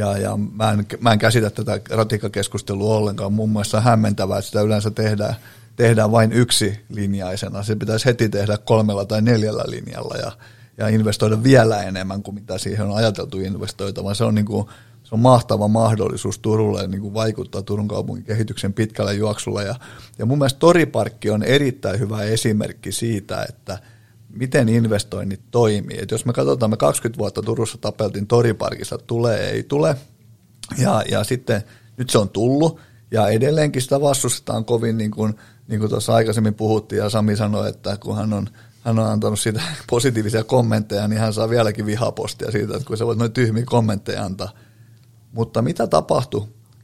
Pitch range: 105-120 Hz